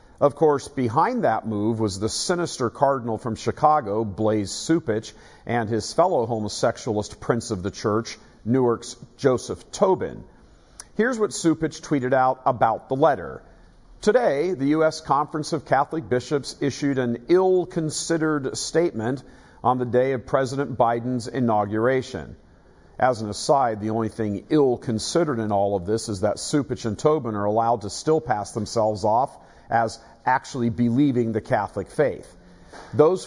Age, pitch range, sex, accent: 50-69, 110-145 Hz, male, American